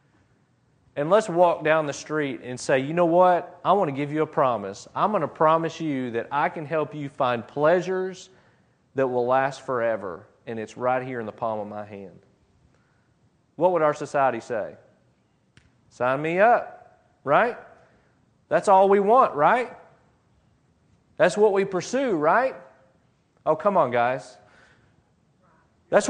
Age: 40-59